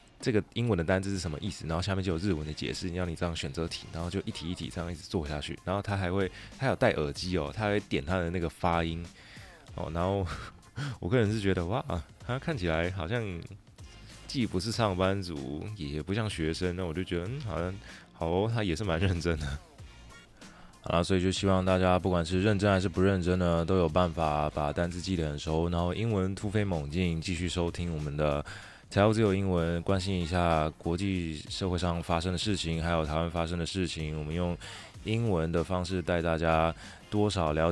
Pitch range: 80-95 Hz